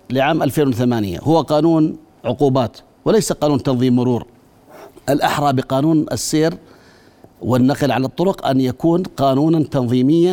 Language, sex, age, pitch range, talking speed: Arabic, male, 50-69, 130-160 Hz, 110 wpm